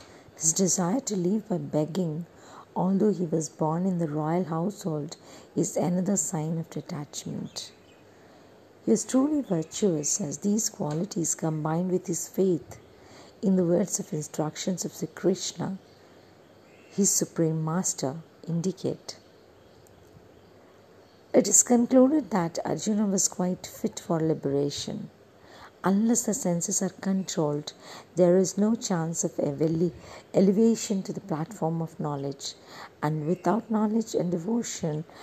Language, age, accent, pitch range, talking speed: English, 50-69, Indian, 160-200 Hz, 125 wpm